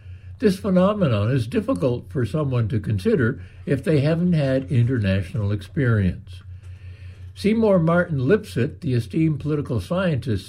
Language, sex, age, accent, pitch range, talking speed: English, male, 60-79, American, 95-155 Hz, 120 wpm